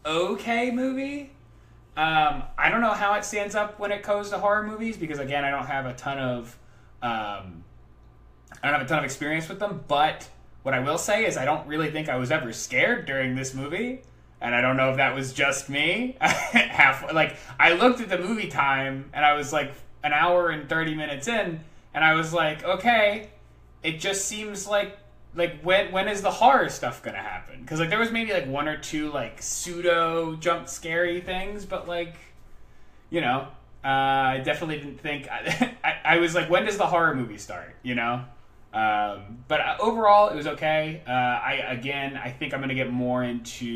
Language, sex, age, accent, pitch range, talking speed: English, male, 20-39, American, 125-185 Hz, 200 wpm